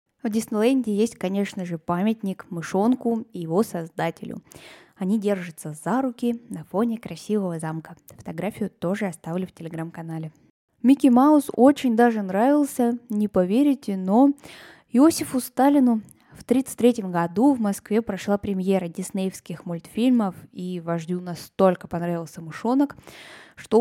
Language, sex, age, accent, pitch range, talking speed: Russian, female, 10-29, native, 175-230 Hz, 125 wpm